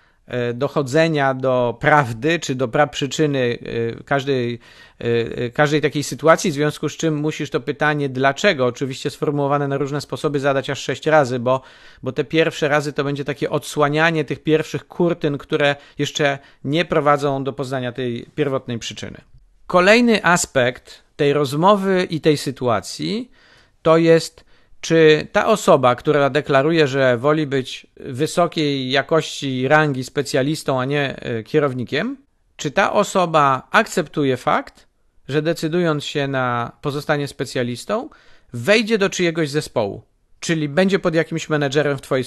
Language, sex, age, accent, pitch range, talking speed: Polish, male, 50-69, native, 135-160 Hz, 140 wpm